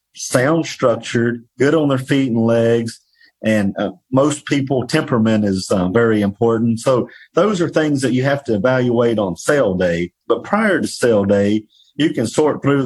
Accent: American